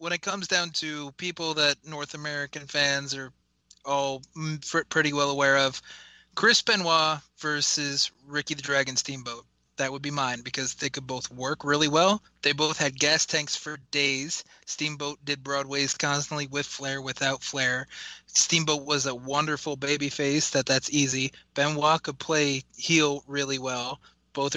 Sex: male